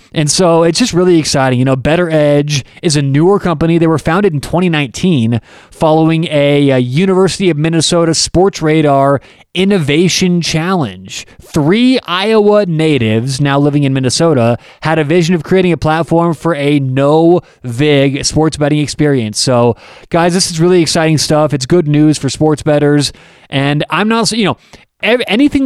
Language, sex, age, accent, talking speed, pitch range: English, male, 20-39, American, 160 wpm, 135-175 Hz